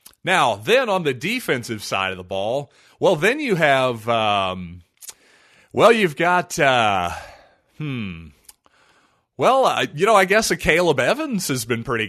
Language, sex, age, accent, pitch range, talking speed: English, male, 30-49, American, 115-150 Hz, 155 wpm